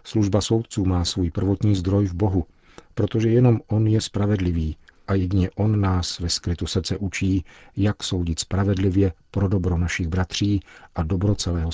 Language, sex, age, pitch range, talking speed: Czech, male, 50-69, 90-100 Hz, 160 wpm